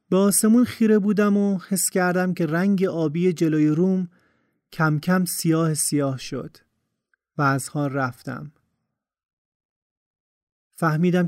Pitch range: 150-185 Hz